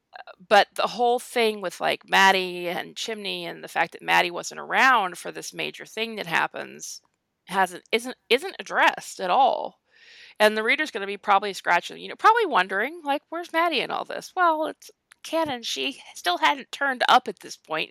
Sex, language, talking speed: female, English, 190 wpm